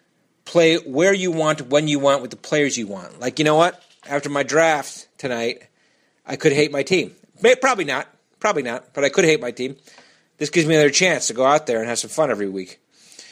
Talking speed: 225 wpm